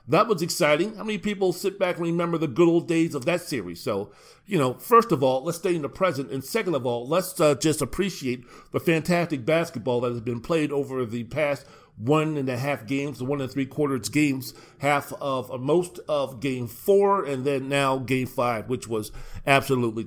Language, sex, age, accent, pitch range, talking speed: English, male, 50-69, American, 135-175 Hz, 210 wpm